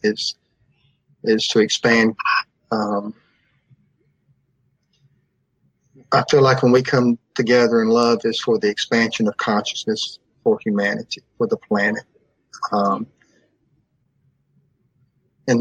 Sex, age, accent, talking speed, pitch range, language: male, 40-59, American, 105 wpm, 115-140 Hz, English